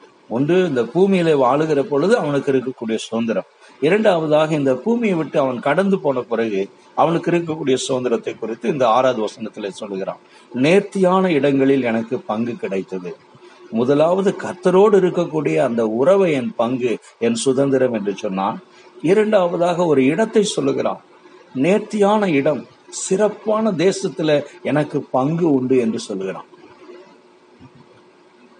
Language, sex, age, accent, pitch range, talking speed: Tamil, male, 60-79, native, 125-170 Hz, 100 wpm